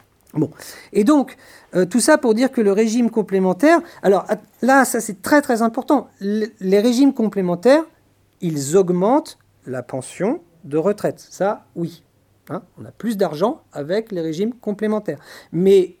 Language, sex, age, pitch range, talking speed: French, male, 40-59, 160-230 Hz, 150 wpm